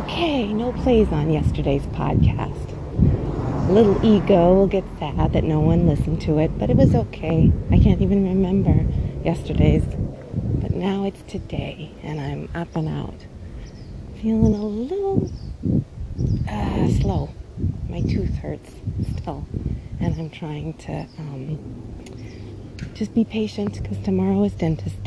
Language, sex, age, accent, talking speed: English, female, 30-49, American, 135 wpm